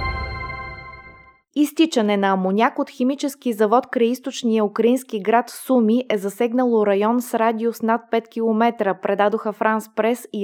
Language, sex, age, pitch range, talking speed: Bulgarian, female, 20-39, 200-240 Hz, 130 wpm